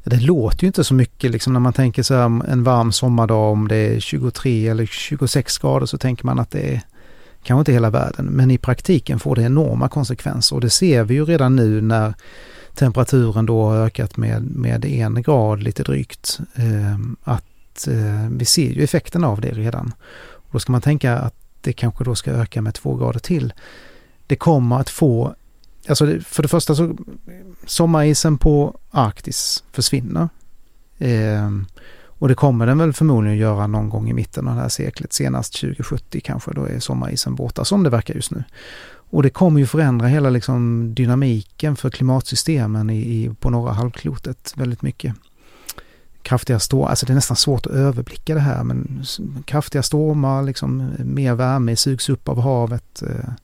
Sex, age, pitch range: male, 30-49, 110-140 Hz